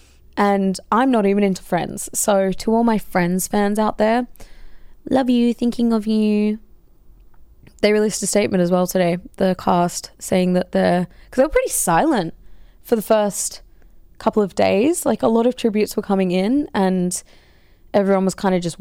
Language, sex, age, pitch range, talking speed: English, female, 20-39, 175-220 Hz, 180 wpm